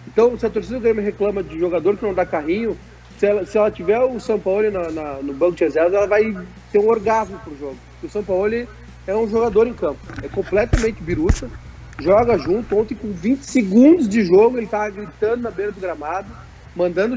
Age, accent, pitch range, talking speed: 40-59, Brazilian, 175-215 Hz, 210 wpm